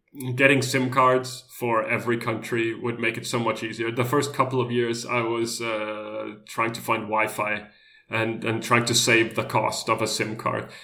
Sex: male